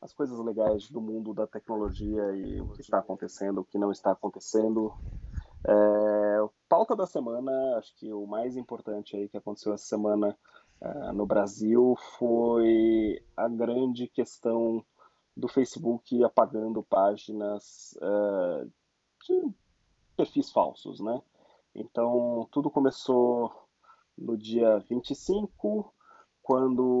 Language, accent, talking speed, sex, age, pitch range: Portuguese, Brazilian, 120 wpm, male, 20-39, 105-130 Hz